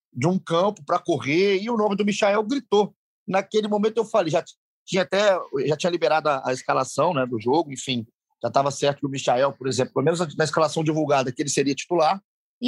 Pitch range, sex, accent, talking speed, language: 155-225 Hz, male, Brazilian, 220 wpm, Portuguese